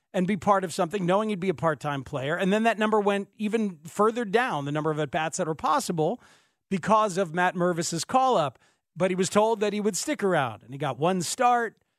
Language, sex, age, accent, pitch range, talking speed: English, male, 40-59, American, 160-215 Hz, 225 wpm